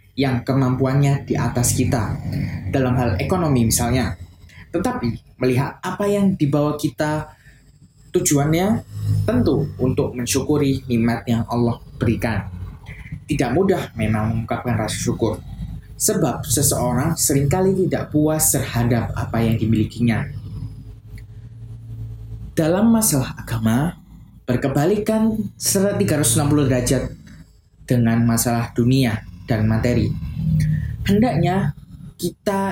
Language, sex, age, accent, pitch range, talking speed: Indonesian, male, 20-39, native, 110-145 Hz, 95 wpm